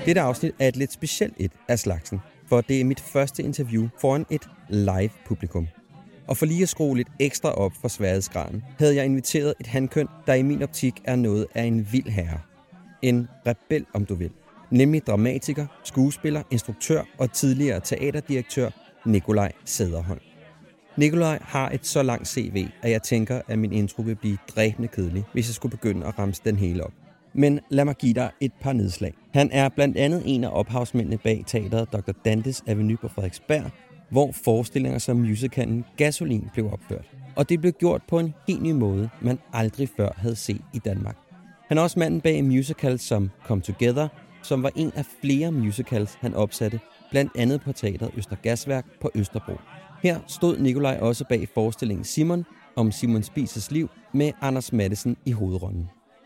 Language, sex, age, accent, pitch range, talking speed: Danish, male, 30-49, native, 110-140 Hz, 180 wpm